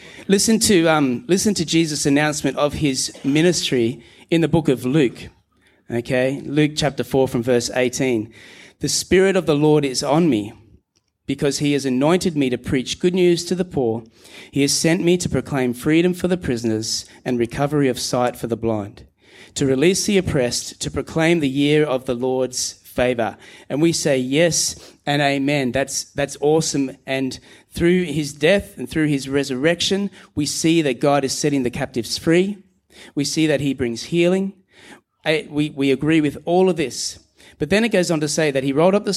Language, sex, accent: English, male, Australian